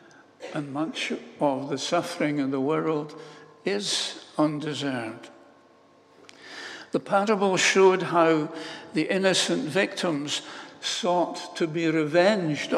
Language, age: English, 60-79